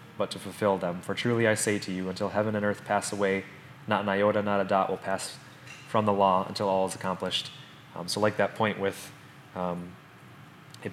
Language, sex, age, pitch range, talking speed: English, male, 20-39, 95-110 Hz, 215 wpm